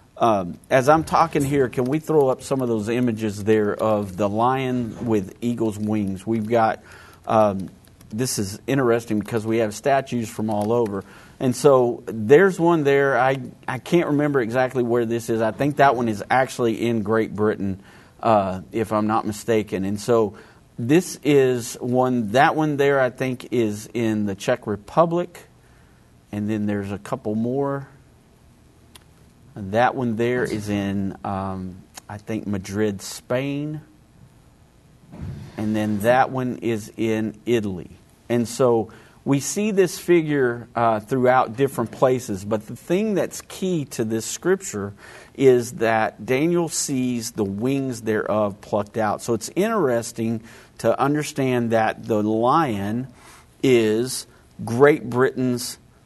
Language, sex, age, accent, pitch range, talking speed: English, male, 40-59, American, 110-130 Hz, 145 wpm